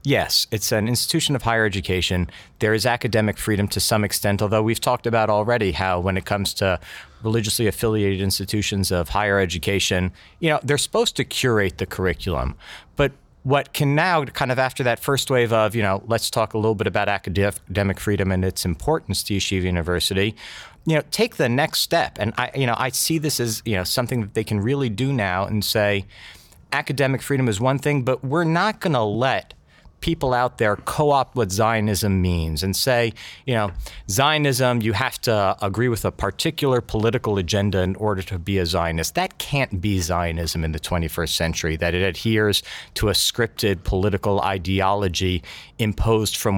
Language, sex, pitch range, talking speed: English, male, 95-130 Hz, 185 wpm